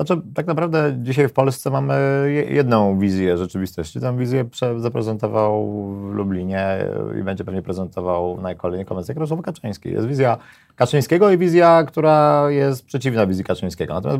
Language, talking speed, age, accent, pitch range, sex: Polish, 150 wpm, 30-49, native, 105-135 Hz, male